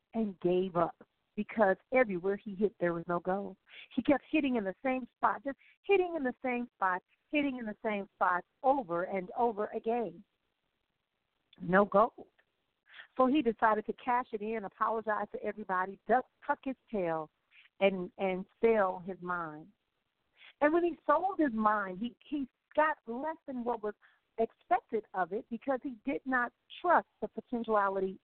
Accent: American